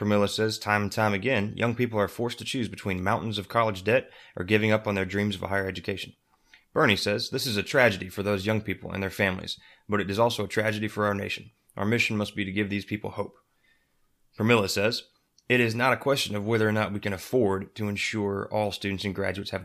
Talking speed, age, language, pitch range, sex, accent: 240 wpm, 30-49, English, 100-115 Hz, male, American